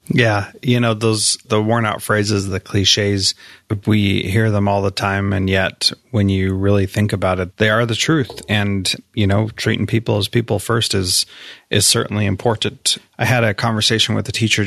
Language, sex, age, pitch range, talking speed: English, male, 30-49, 100-115 Hz, 190 wpm